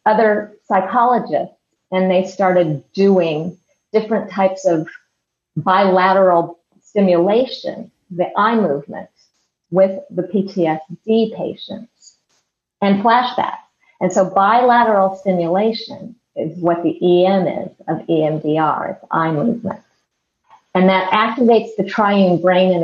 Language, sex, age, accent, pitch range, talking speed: English, female, 50-69, American, 180-220 Hz, 110 wpm